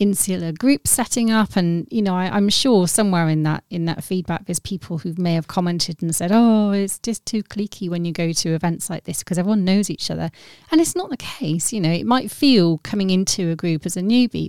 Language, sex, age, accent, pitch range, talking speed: English, female, 30-49, British, 165-200 Hz, 235 wpm